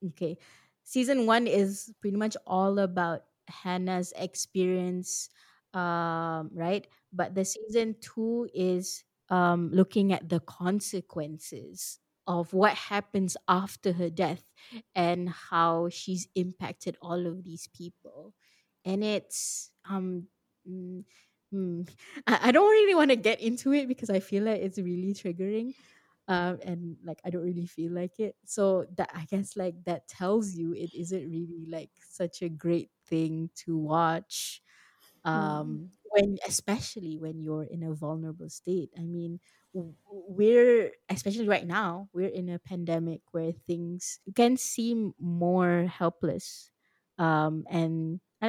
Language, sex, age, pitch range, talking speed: Malay, female, 20-39, 170-200 Hz, 140 wpm